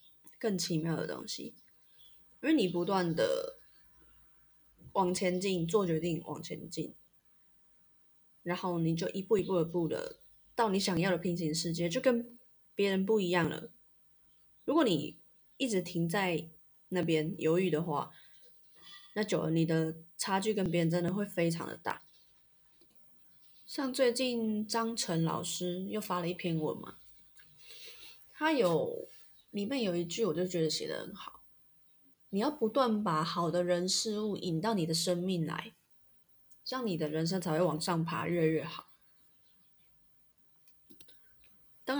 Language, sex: Chinese, female